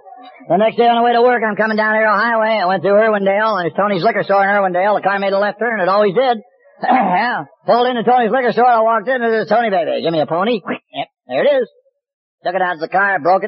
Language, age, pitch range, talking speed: English, 50-69, 195-250 Hz, 270 wpm